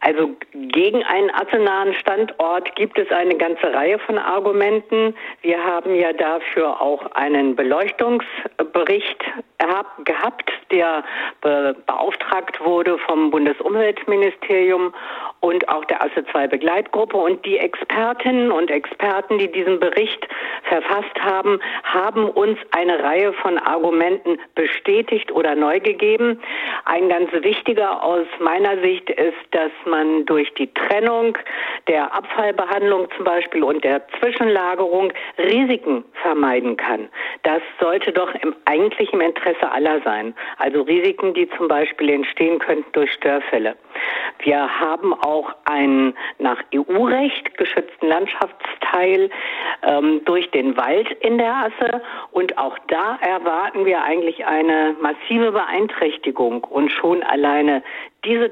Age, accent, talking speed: 50-69, German, 120 wpm